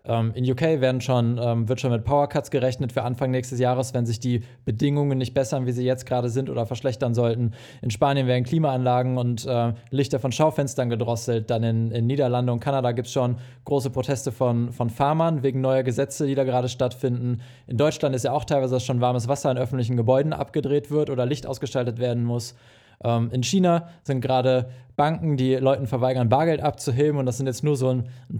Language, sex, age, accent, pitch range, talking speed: German, male, 20-39, German, 120-135 Hz, 190 wpm